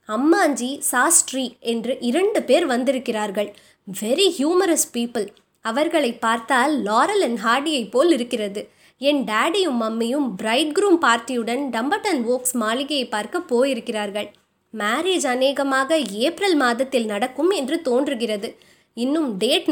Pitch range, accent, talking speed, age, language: 225-300 Hz, native, 115 wpm, 20-39, Tamil